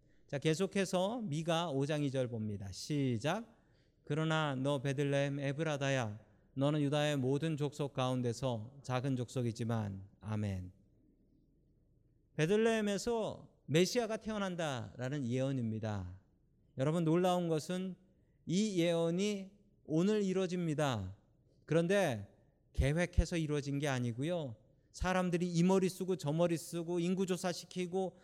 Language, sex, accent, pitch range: Korean, male, native, 130-180 Hz